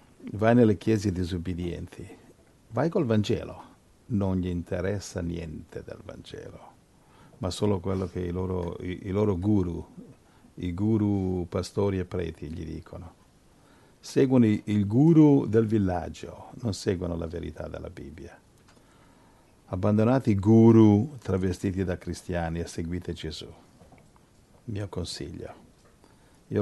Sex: male